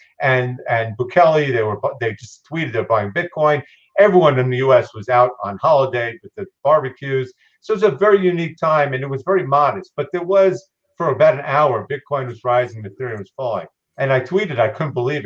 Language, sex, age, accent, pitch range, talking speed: English, male, 50-69, American, 120-165 Hz, 210 wpm